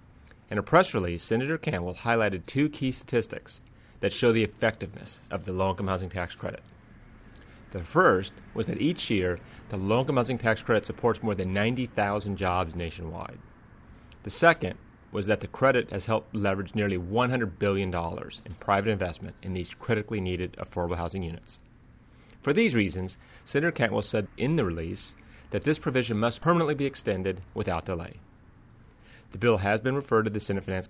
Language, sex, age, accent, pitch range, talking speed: English, male, 30-49, American, 95-115 Hz, 165 wpm